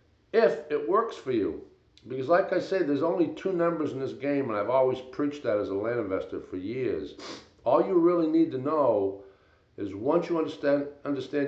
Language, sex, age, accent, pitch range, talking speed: English, male, 60-79, American, 115-160 Hz, 200 wpm